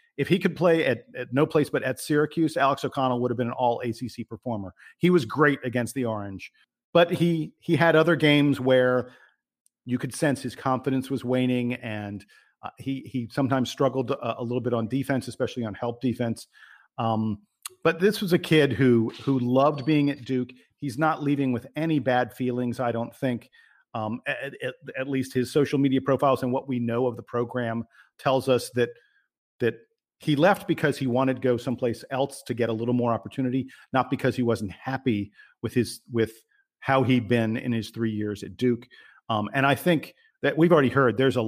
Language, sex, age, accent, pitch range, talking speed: English, male, 50-69, American, 115-135 Hz, 205 wpm